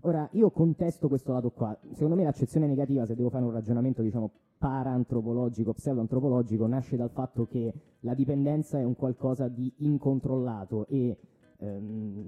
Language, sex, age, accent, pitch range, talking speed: Italian, male, 20-39, native, 120-150 Hz, 150 wpm